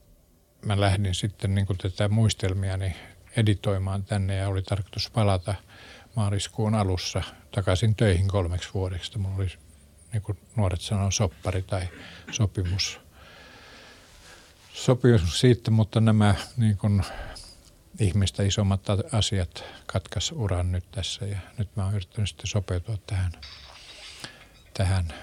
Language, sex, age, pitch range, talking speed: Finnish, male, 50-69, 90-105 Hz, 110 wpm